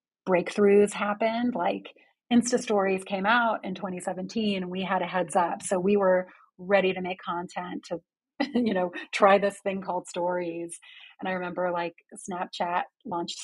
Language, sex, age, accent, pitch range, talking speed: English, female, 30-49, American, 180-215 Hz, 160 wpm